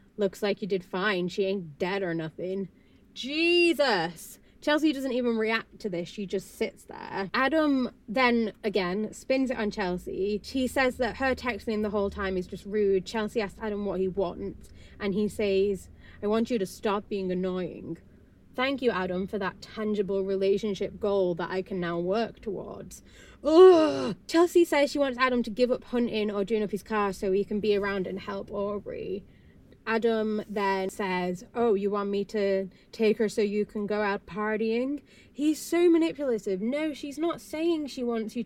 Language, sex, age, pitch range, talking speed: English, female, 20-39, 195-240 Hz, 185 wpm